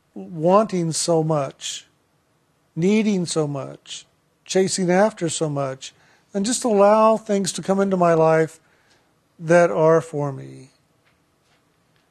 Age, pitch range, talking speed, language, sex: 50-69, 160-200 Hz, 115 wpm, English, male